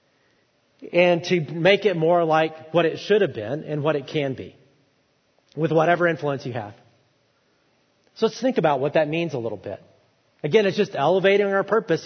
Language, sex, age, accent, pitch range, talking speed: English, male, 40-59, American, 155-190 Hz, 185 wpm